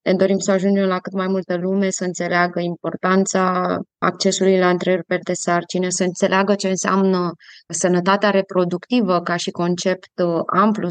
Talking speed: 150 wpm